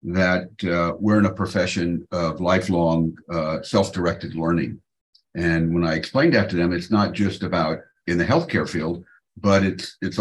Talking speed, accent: 170 wpm, American